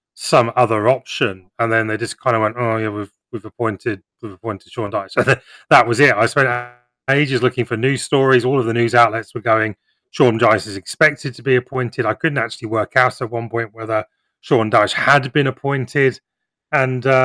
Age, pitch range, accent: 30-49, 105-120 Hz, British